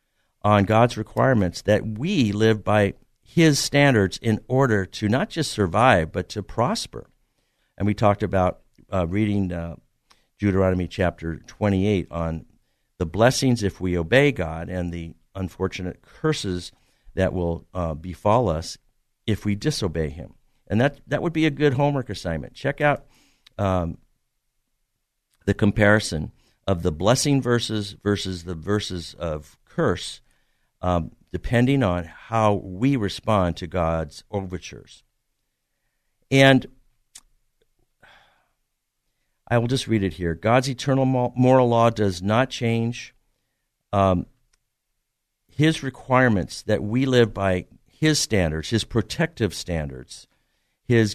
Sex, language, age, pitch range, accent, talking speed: male, English, 50-69, 90-125 Hz, American, 125 wpm